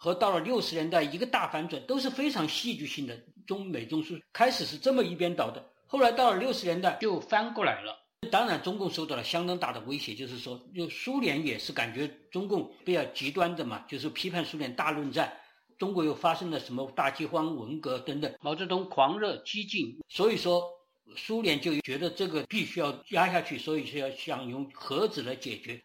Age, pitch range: 50-69, 135-180 Hz